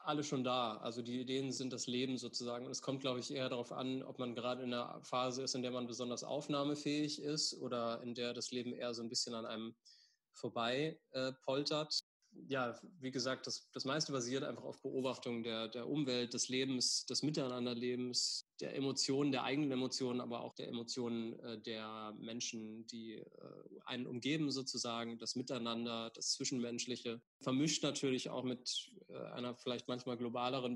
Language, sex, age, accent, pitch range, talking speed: German, male, 20-39, German, 115-135 Hz, 180 wpm